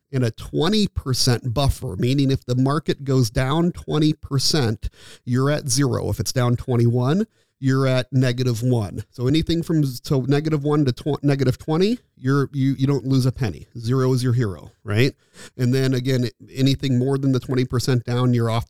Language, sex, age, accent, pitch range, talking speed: English, male, 40-59, American, 120-145 Hz, 170 wpm